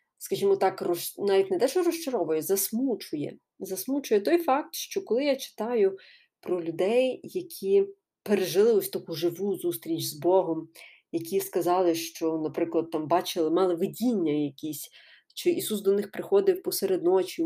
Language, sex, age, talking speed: Ukrainian, female, 30-49, 140 wpm